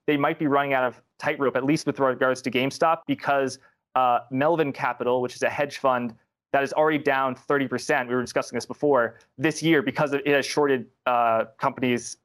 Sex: male